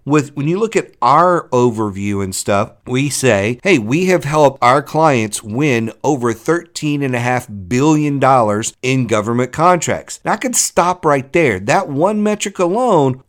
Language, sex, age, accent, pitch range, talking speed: English, male, 50-69, American, 110-145 Hz, 160 wpm